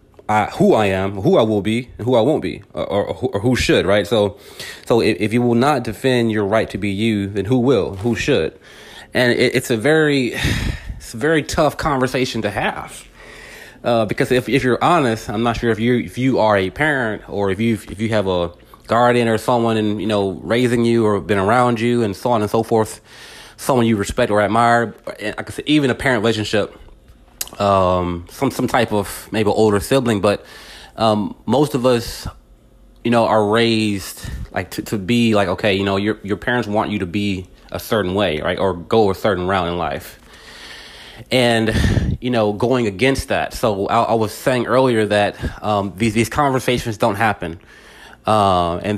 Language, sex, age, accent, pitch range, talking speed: English, male, 30-49, American, 100-120 Hz, 200 wpm